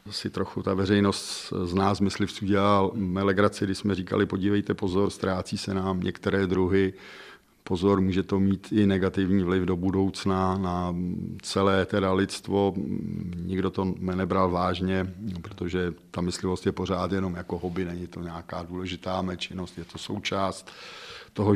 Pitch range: 95-105 Hz